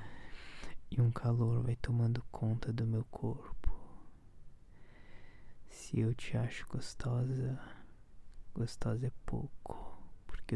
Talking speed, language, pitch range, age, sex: 100 wpm, Portuguese, 80-125 Hz, 20-39, male